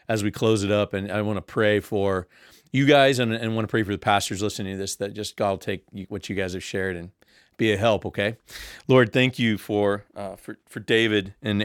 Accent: American